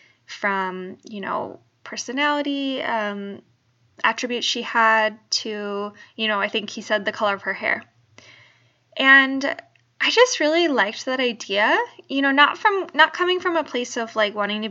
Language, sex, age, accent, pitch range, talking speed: English, female, 20-39, American, 205-280 Hz, 165 wpm